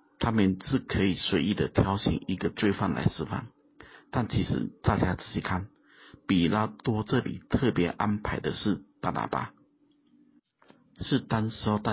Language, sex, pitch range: Chinese, male, 95-115 Hz